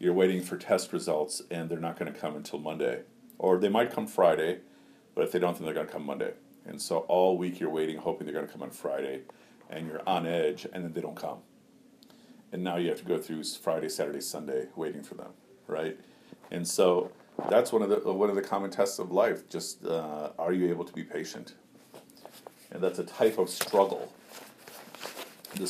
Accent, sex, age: American, male, 50-69